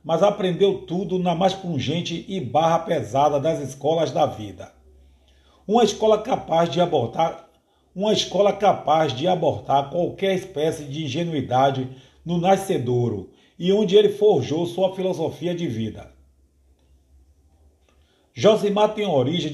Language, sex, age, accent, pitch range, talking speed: Portuguese, male, 50-69, Brazilian, 130-190 Hz, 110 wpm